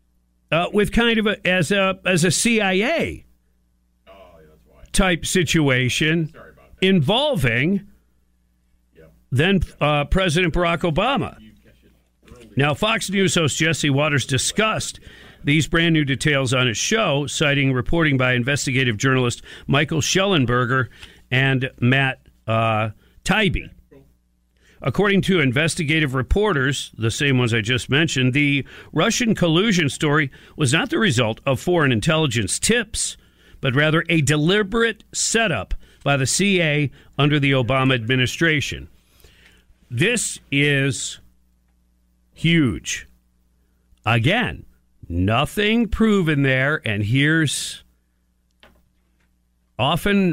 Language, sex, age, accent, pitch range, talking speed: English, male, 50-69, American, 105-165 Hz, 105 wpm